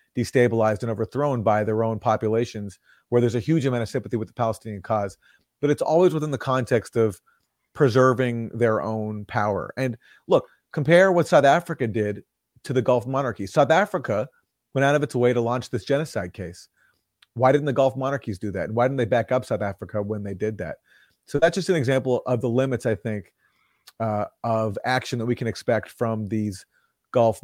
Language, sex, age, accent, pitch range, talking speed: English, male, 40-59, American, 110-130 Hz, 200 wpm